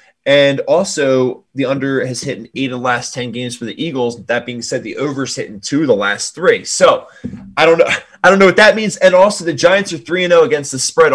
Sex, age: male, 20-39